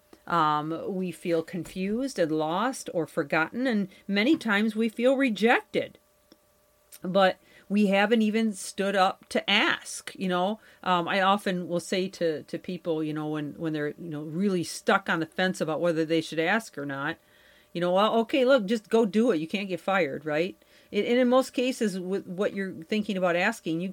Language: English